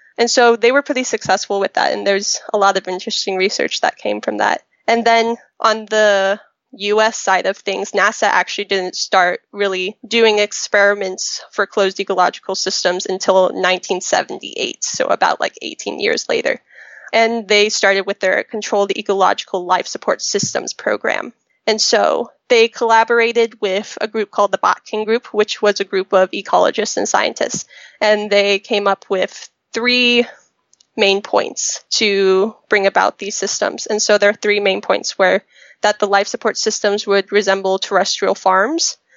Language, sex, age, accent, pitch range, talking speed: English, female, 10-29, American, 195-225 Hz, 160 wpm